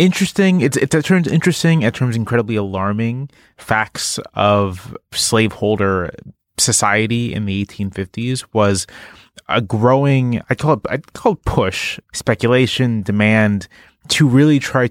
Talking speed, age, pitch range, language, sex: 130 wpm, 20-39, 95-115 Hz, English, male